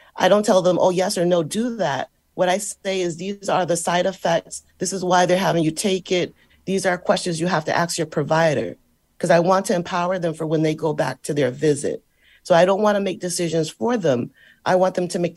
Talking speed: 245 wpm